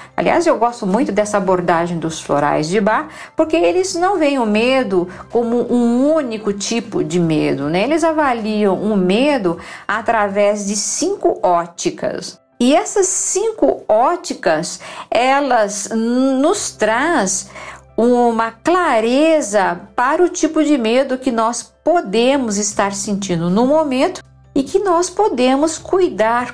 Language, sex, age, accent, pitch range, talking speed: Portuguese, female, 50-69, Brazilian, 195-295 Hz, 130 wpm